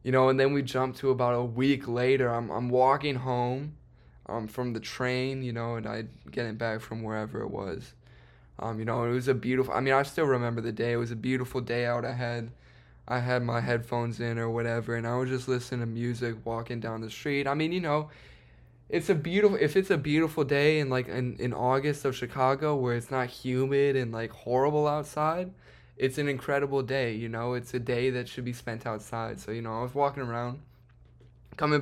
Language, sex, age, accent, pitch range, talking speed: English, male, 10-29, American, 115-135 Hz, 225 wpm